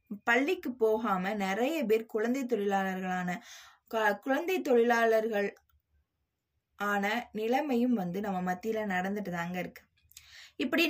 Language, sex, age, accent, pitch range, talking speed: Tamil, female, 20-39, native, 200-255 Hz, 95 wpm